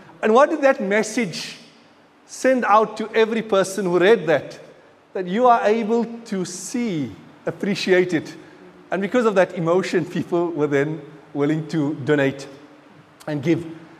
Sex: male